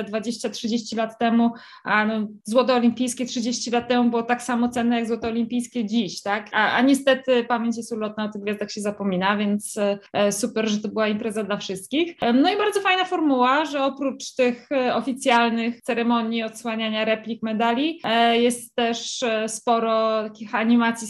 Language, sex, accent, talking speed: Polish, female, native, 160 wpm